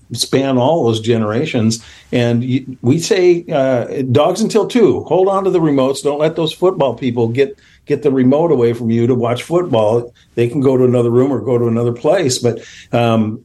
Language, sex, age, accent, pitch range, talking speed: English, male, 50-69, American, 115-145 Hz, 195 wpm